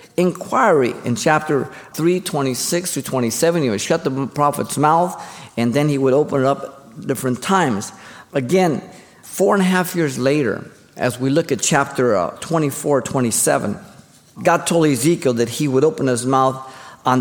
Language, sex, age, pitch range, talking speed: English, male, 50-69, 120-170 Hz, 165 wpm